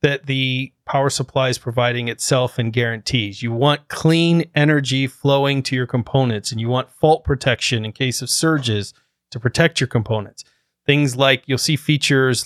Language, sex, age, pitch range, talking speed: English, male, 30-49, 120-140 Hz, 170 wpm